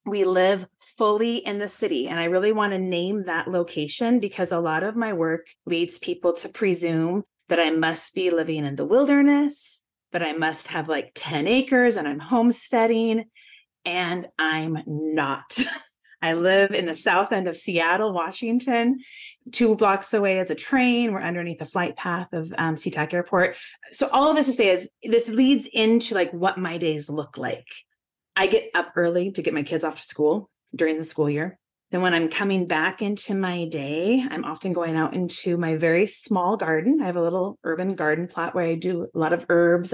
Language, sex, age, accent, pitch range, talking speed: English, female, 30-49, American, 170-235 Hz, 195 wpm